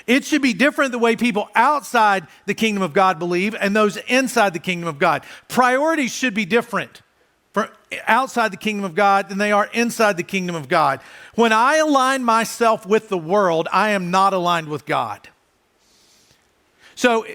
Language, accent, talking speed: English, American, 175 wpm